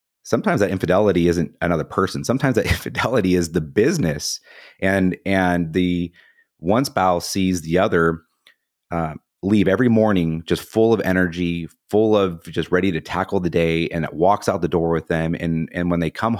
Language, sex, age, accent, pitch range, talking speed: English, male, 30-49, American, 85-100 Hz, 180 wpm